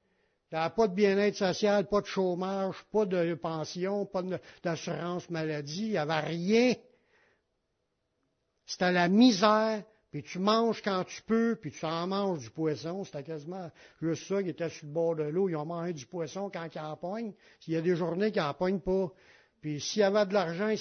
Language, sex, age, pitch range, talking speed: French, male, 60-79, 170-220 Hz, 200 wpm